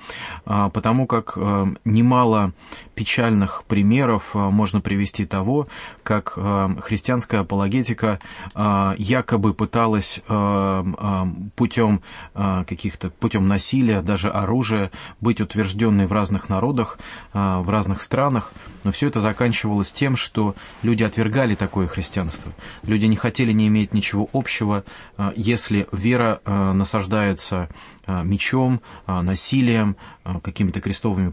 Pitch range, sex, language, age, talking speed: 95-115 Hz, male, English, 30-49, 100 wpm